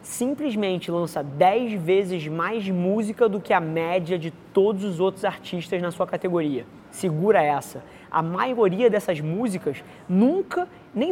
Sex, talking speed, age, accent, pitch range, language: male, 140 wpm, 20-39, Brazilian, 175-220 Hz, Portuguese